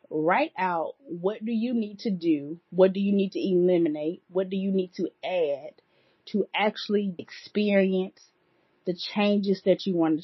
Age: 20-39